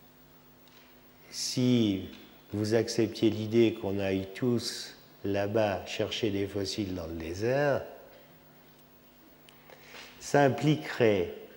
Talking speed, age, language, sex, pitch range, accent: 85 wpm, 50-69, French, male, 100-120 Hz, French